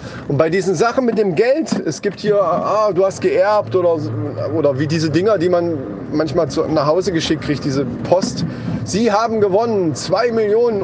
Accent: German